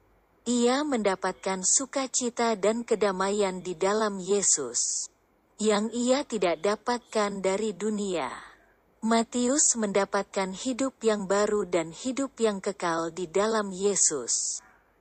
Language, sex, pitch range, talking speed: Indonesian, female, 190-230 Hz, 105 wpm